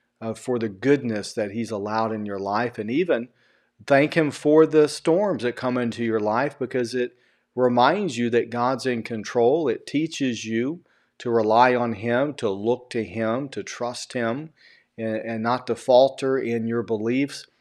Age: 40-59